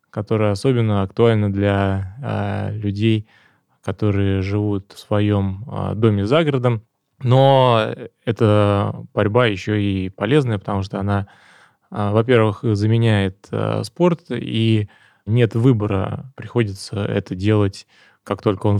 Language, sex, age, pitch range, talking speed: Russian, male, 20-39, 100-120 Hz, 120 wpm